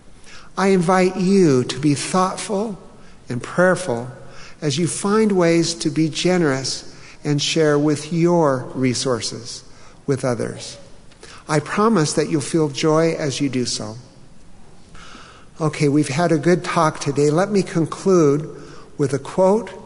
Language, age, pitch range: English, 50-69, 135-170 Hz